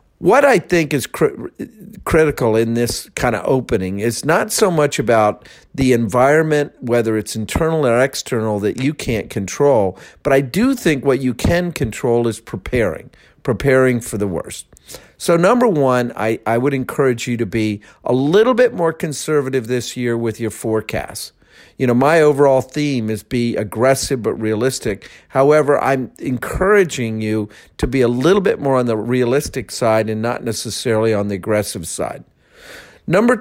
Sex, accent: male, American